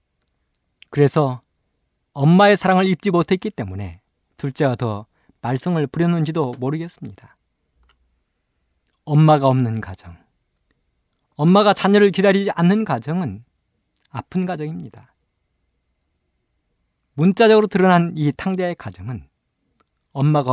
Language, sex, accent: Korean, male, native